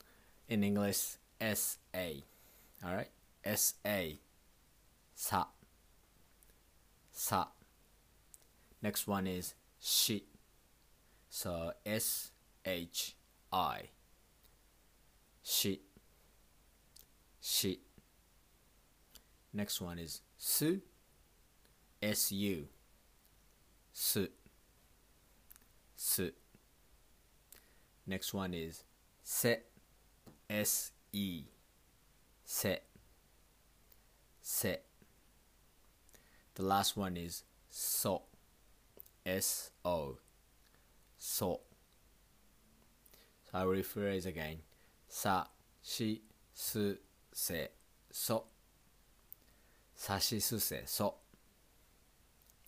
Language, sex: Japanese, male